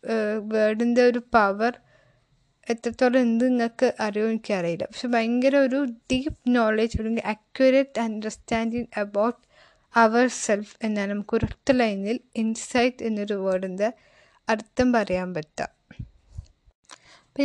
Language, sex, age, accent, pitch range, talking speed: Malayalam, female, 20-39, native, 200-240 Hz, 105 wpm